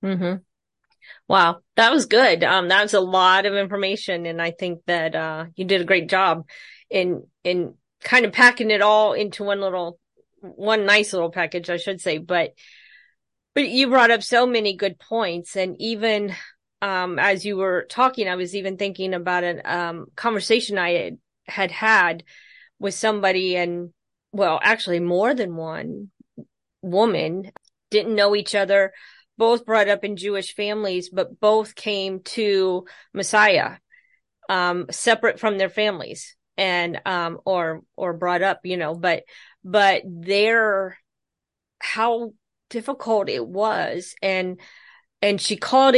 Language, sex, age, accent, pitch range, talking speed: English, female, 30-49, American, 180-215 Hz, 150 wpm